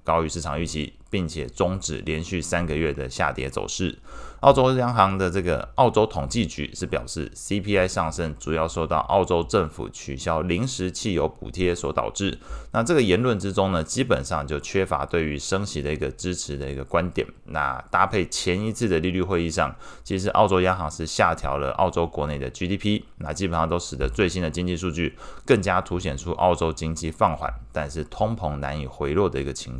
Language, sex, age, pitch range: Chinese, male, 20-39, 80-100 Hz